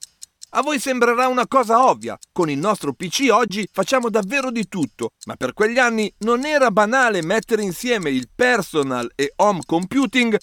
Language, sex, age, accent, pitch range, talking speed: Italian, male, 40-59, native, 150-240 Hz, 165 wpm